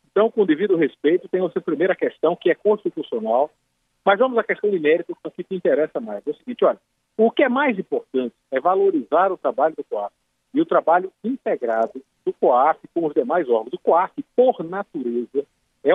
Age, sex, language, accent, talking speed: 50-69, male, Portuguese, Brazilian, 205 wpm